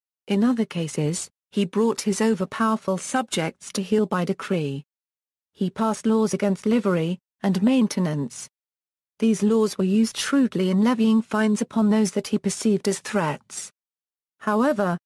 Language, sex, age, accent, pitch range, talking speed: English, female, 40-59, British, 185-220 Hz, 140 wpm